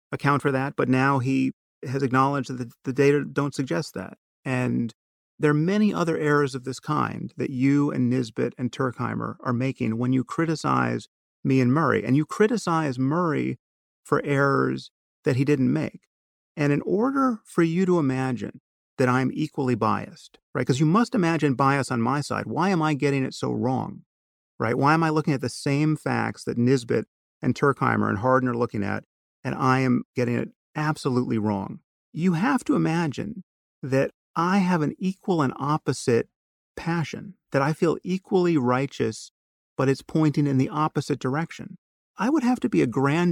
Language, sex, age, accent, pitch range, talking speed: English, male, 40-59, American, 125-160 Hz, 180 wpm